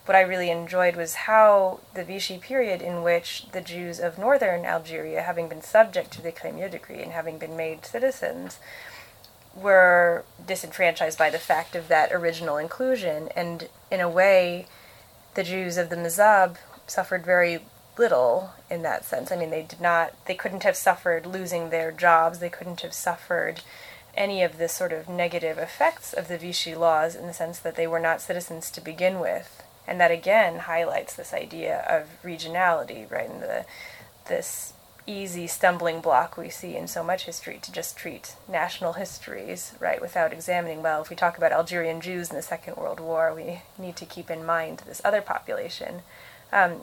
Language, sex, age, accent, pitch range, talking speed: English, female, 20-39, American, 165-185 Hz, 180 wpm